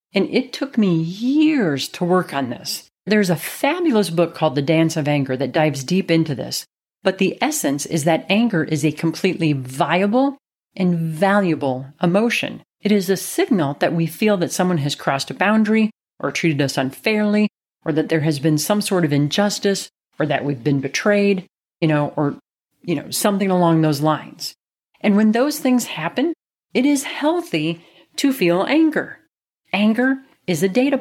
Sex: female